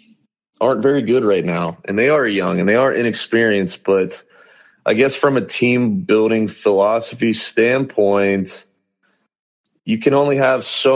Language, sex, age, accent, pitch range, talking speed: English, male, 30-49, American, 100-135 Hz, 150 wpm